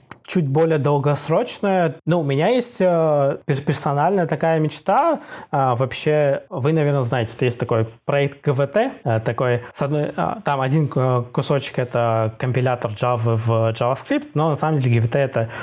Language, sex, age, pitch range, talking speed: Russian, male, 20-39, 120-155 Hz, 125 wpm